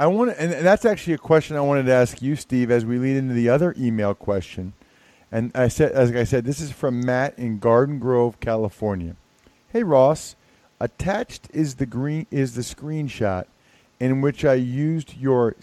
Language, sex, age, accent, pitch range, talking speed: English, male, 40-59, American, 120-155 Hz, 190 wpm